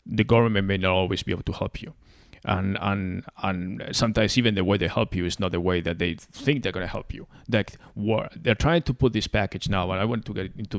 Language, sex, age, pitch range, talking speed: English, male, 30-49, 90-110 Hz, 255 wpm